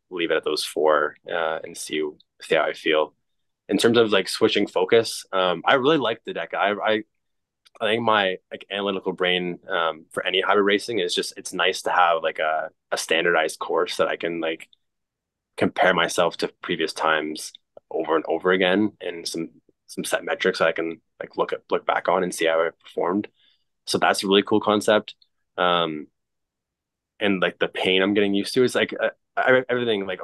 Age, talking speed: 20-39, 200 wpm